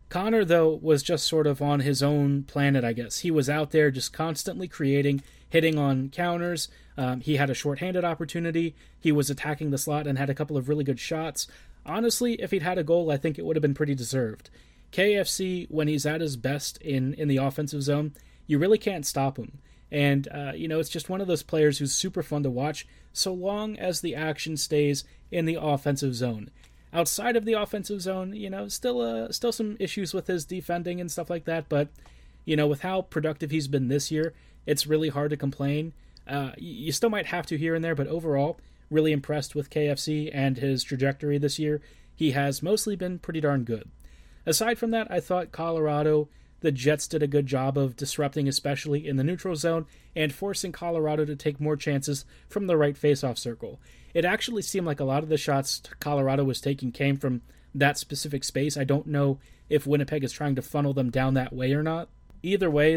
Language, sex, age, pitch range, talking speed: English, male, 30-49, 140-165 Hz, 210 wpm